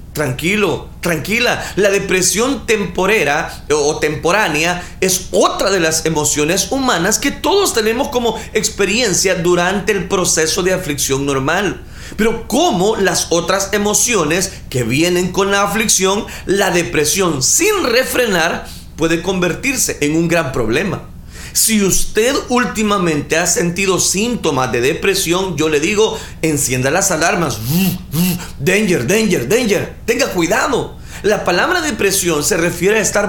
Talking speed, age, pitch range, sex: 125 wpm, 40-59, 160-215 Hz, male